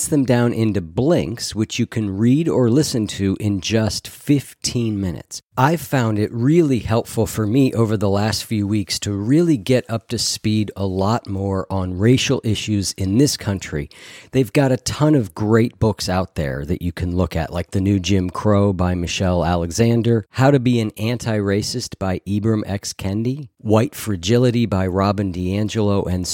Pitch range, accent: 95-120 Hz, American